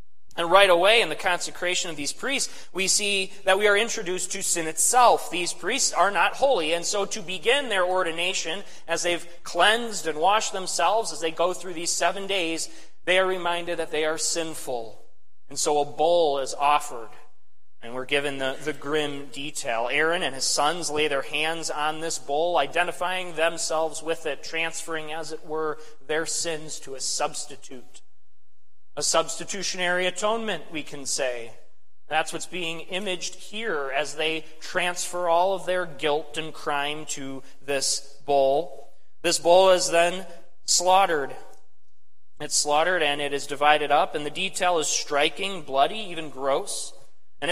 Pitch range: 145-180 Hz